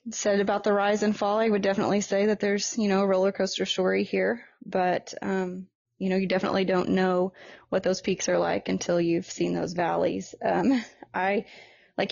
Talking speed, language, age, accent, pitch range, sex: 200 wpm, English, 20-39, American, 175-195 Hz, female